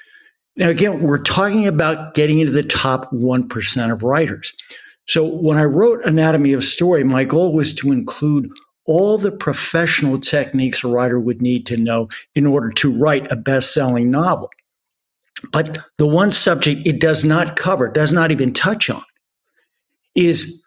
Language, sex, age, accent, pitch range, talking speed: English, male, 50-69, American, 130-165 Hz, 160 wpm